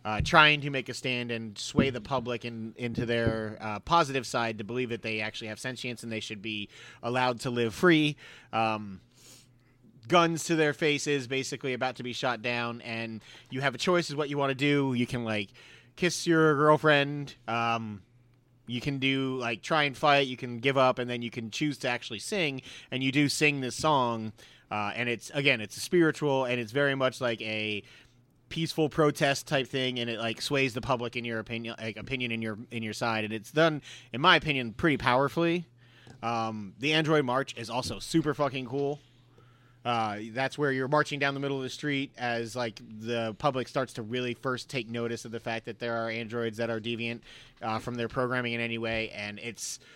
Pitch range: 115-140 Hz